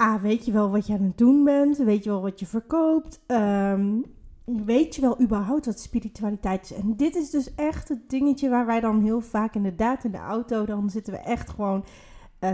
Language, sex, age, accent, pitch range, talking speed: Dutch, female, 30-49, Dutch, 210-255 Hz, 225 wpm